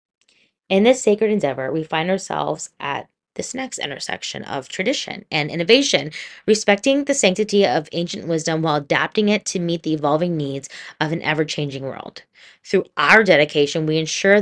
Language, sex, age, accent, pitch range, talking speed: English, female, 20-39, American, 155-195 Hz, 160 wpm